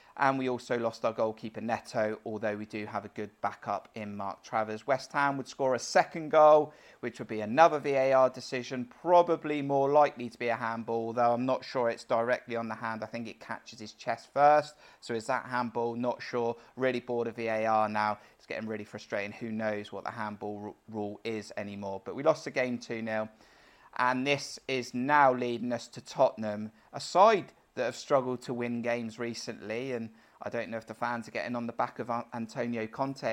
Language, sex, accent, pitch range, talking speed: English, male, British, 110-125 Hz, 205 wpm